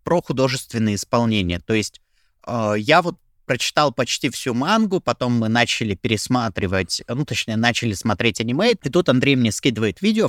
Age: 20-39